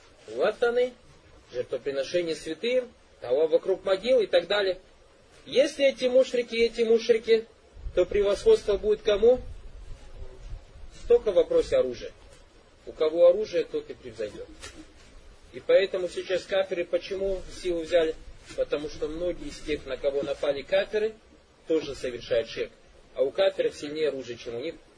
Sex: male